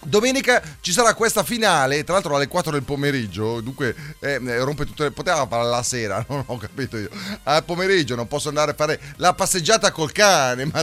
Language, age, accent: Italian, 30-49, native